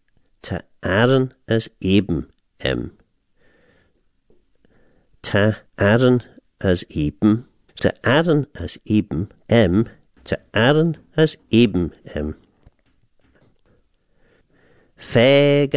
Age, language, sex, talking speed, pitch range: 60-79, English, male, 75 wpm, 85-125 Hz